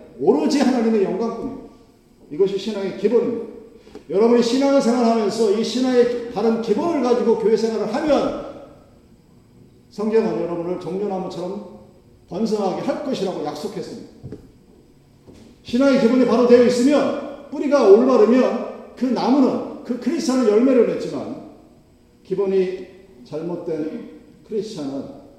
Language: Korean